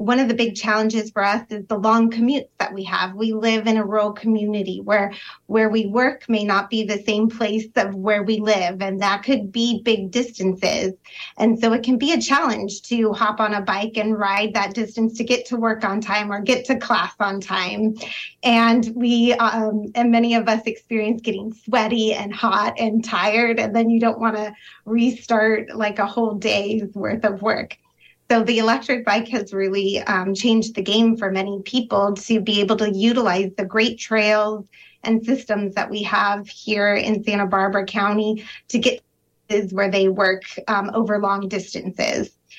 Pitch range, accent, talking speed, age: 205-230 Hz, American, 195 wpm, 20-39